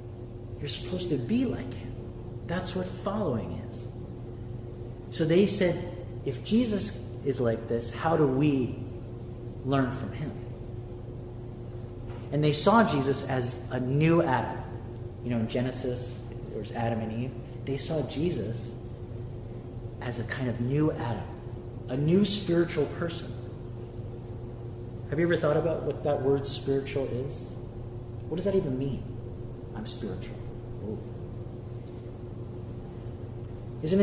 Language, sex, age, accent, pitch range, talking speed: English, male, 30-49, American, 120-135 Hz, 130 wpm